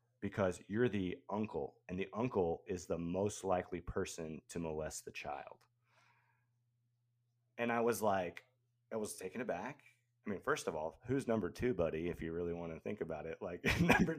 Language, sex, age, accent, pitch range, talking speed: English, male, 30-49, American, 110-135 Hz, 180 wpm